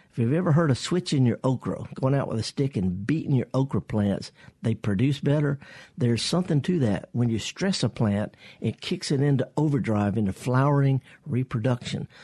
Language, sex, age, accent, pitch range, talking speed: English, male, 50-69, American, 115-160 Hz, 185 wpm